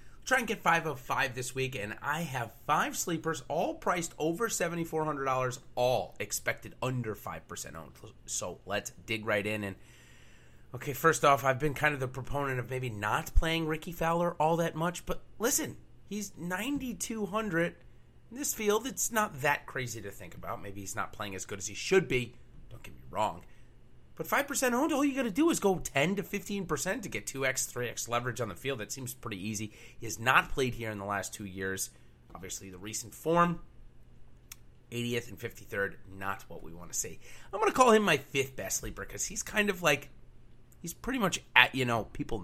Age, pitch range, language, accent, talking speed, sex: 30-49, 110-170 Hz, English, American, 210 wpm, male